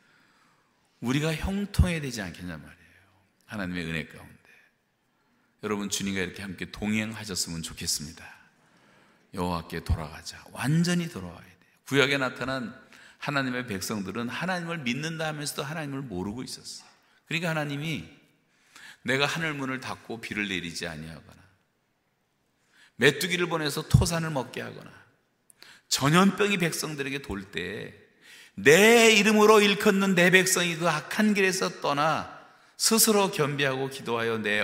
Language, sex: Korean, male